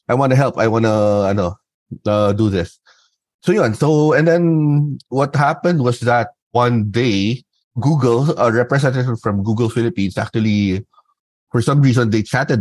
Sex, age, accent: male, 30-49, native